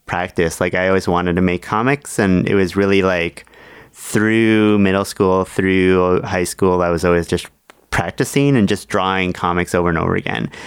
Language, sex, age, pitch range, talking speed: English, male, 30-49, 90-105 Hz, 180 wpm